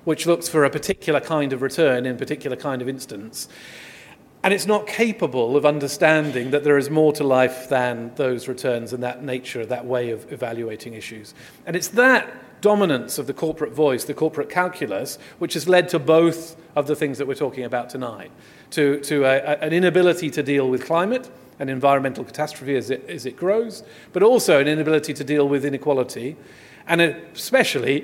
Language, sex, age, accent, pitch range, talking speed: English, male, 40-59, British, 135-170 Hz, 185 wpm